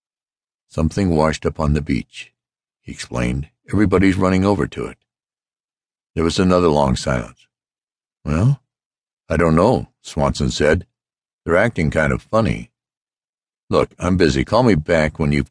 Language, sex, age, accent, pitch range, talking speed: English, male, 60-79, American, 75-100 Hz, 145 wpm